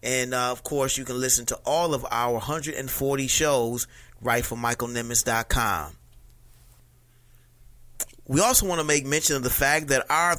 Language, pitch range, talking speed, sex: English, 125-150 Hz, 155 wpm, male